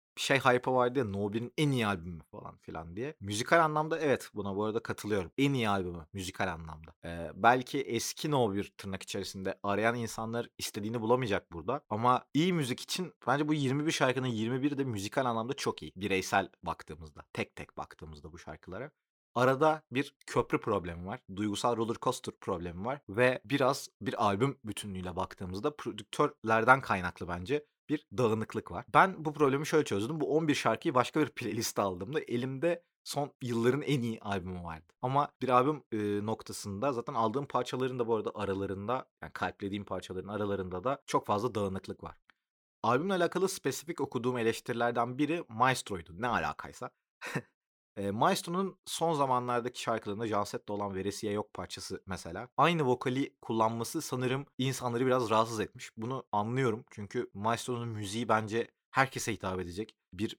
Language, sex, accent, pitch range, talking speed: Turkish, male, native, 100-135 Hz, 155 wpm